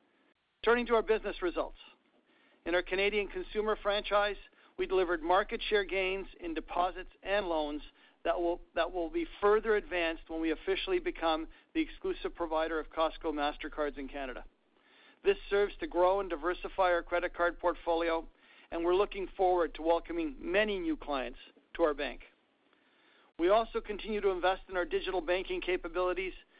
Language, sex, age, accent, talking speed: English, male, 50-69, American, 160 wpm